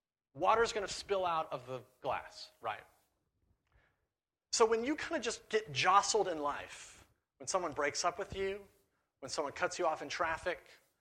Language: English